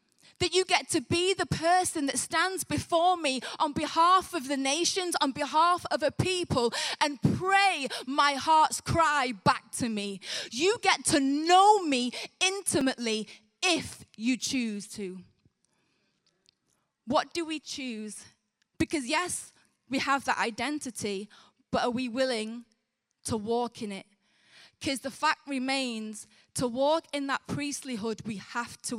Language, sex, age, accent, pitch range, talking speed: English, female, 20-39, British, 230-310 Hz, 145 wpm